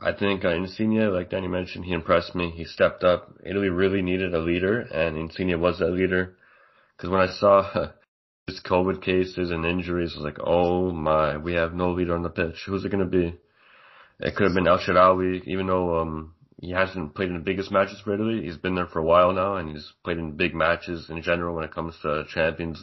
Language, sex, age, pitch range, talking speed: English, male, 20-39, 85-100 Hz, 230 wpm